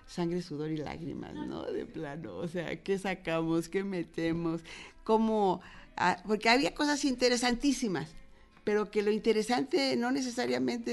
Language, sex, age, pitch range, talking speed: Spanish, female, 50-69, 170-200 Hz, 130 wpm